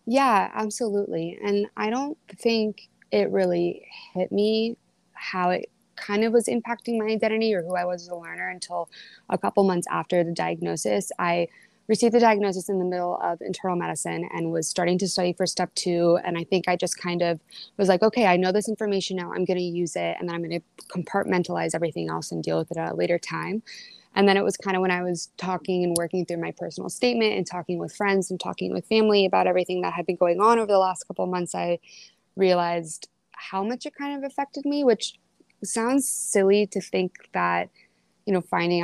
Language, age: English, 20-39